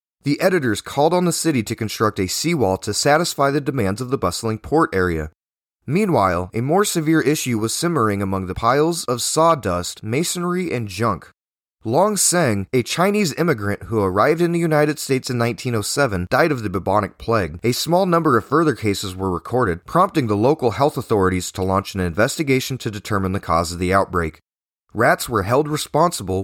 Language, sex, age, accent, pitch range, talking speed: English, male, 30-49, American, 95-150 Hz, 180 wpm